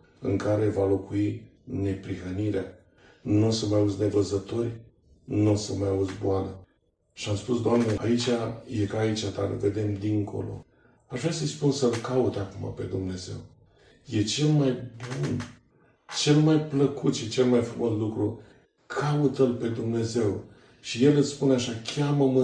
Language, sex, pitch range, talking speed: Romanian, male, 105-135 Hz, 155 wpm